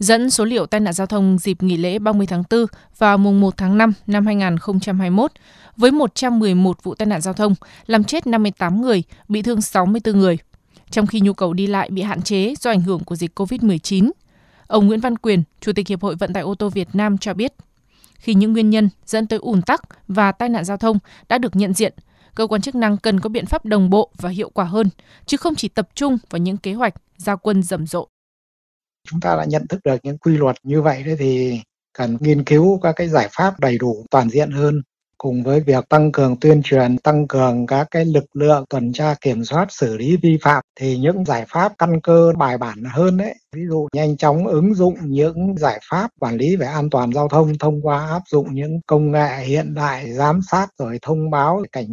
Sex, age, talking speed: female, 20-39, 230 wpm